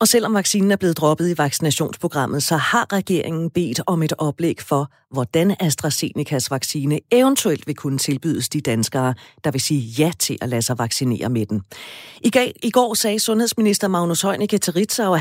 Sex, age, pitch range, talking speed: female, 40-59, 135-180 Hz, 180 wpm